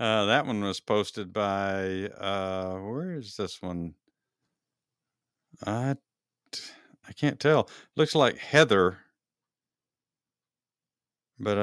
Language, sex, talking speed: English, male, 100 wpm